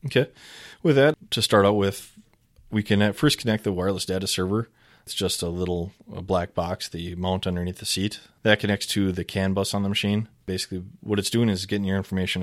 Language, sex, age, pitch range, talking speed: English, male, 20-39, 90-105 Hz, 210 wpm